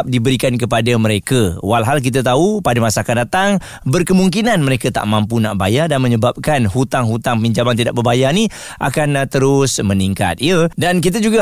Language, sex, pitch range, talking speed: Malay, male, 115-145 Hz, 150 wpm